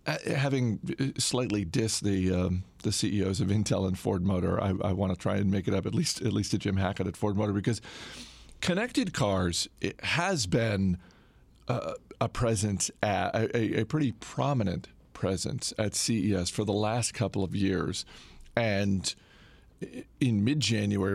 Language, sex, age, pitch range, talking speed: English, male, 40-59, 95-115 Hz, 165 wpm